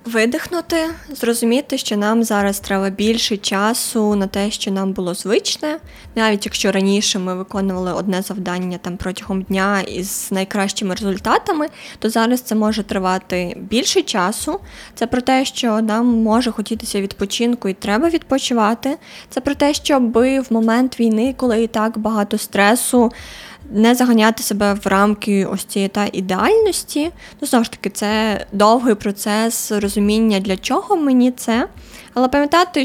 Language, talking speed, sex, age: Ukrainian, 145 wpm, female, 20-39